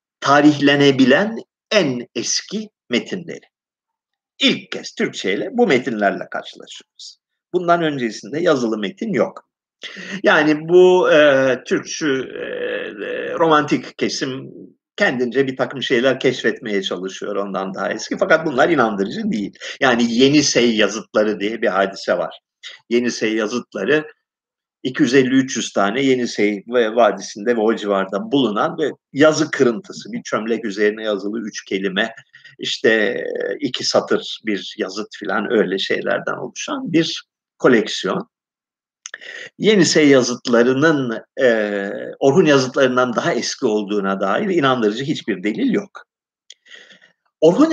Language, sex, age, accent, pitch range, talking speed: Turkish, male, 50-69, native, 110-185 Hz, 105 wpm